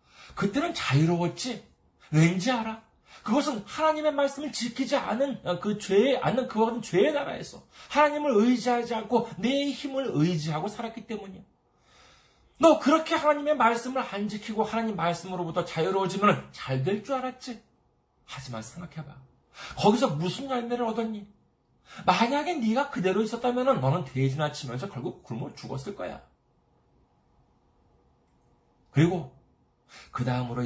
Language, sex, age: Korean, male, 40-59